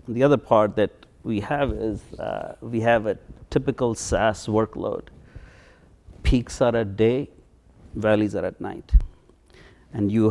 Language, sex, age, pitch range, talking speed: English, male, 60-79, 100-125 Hz, 140 wpm